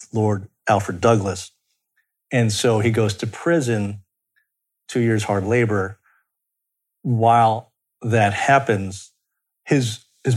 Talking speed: 105 wpm